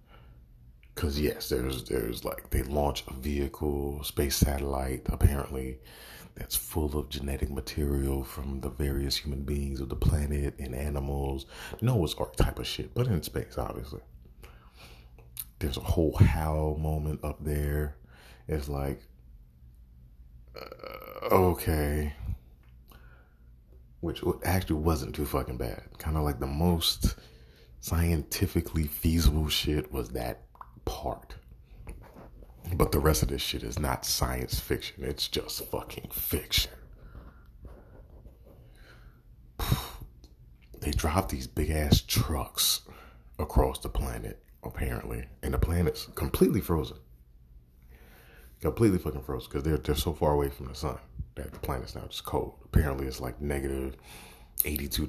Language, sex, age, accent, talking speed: English, male, 30-49, American, 125 wpm